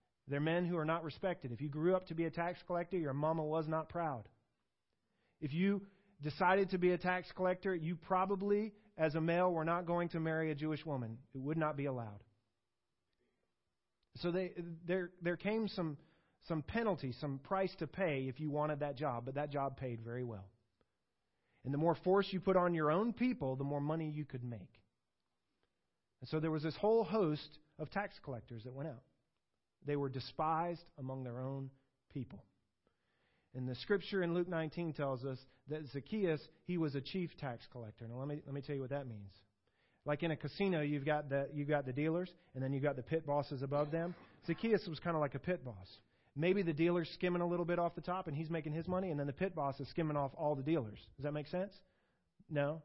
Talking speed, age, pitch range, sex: 215 wpm, 30-49, 130-175 Hz, male